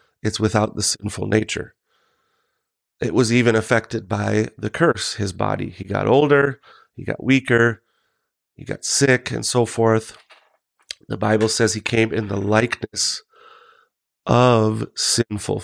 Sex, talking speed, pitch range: male, 140 wpm, 105-125 Hz